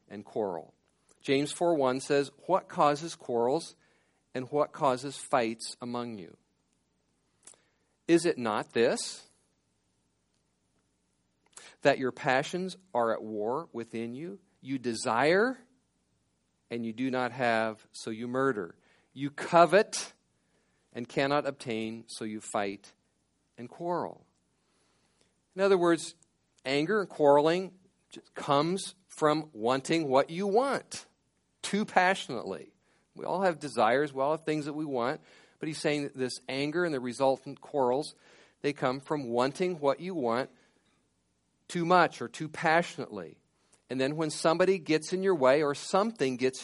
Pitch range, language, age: 120-170 Hz, English, 50-69